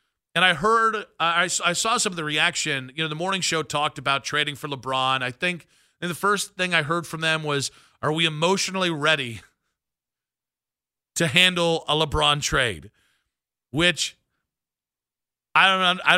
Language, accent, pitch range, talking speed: English, American, 140-180 Hz, 155 wpm